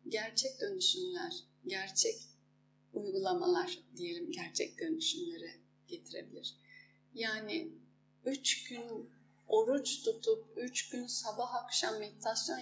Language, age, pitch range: Turkish, 30-49, 240-365 Hz